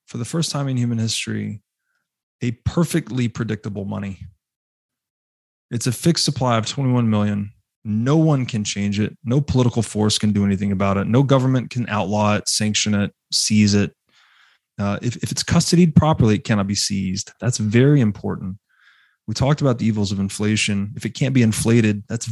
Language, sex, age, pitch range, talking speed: English, male, 20-39, 105-140 Hz, 175 wpm